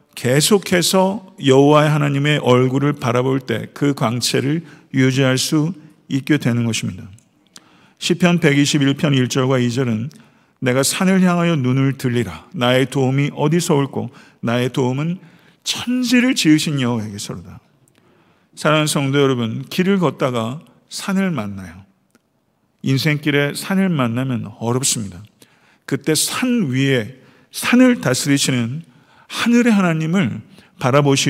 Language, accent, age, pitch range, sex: Korean, native, 50-69, 125-165 Hz, male